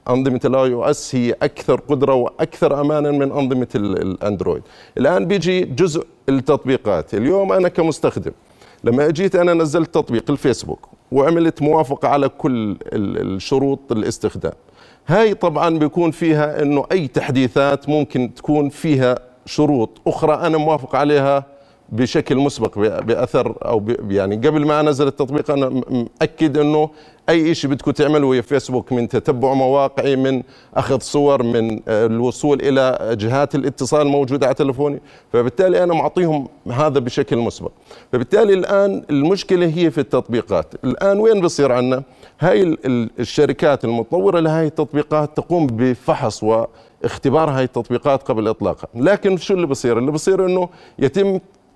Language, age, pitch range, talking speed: Arabic, 40-59, 130-155 Hz, 130 wpm